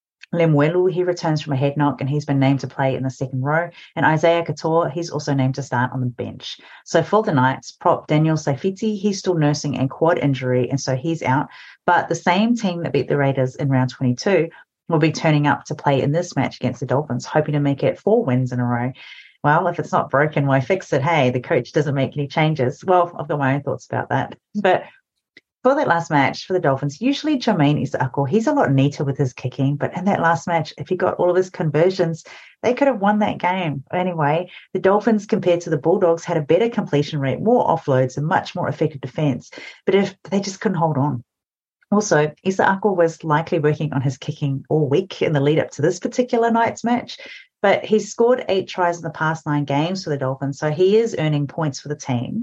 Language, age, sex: English, 30-49, female